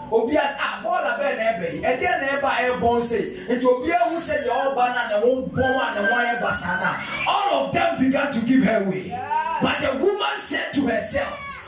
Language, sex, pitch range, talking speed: English, male, 245-300 Hz, 70 wpm